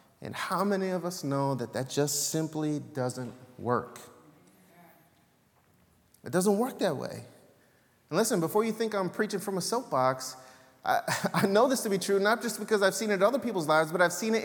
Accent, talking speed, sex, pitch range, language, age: American, 200 wpm, male, 130-215 Hz, English, 30-49